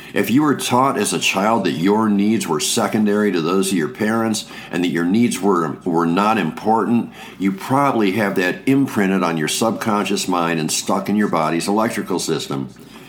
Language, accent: English, American